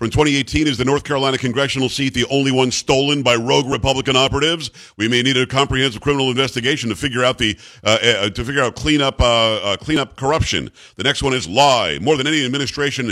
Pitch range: 125-150 Hz